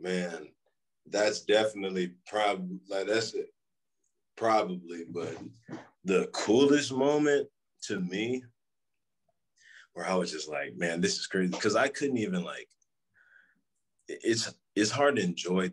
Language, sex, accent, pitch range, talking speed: English, male, American, 85-145 Hz, 120 wpm